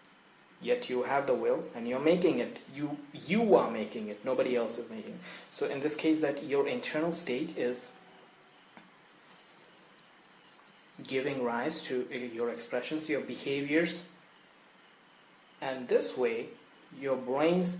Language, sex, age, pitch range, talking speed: English, male, 30-49, 125-160 Hz, 135 wpm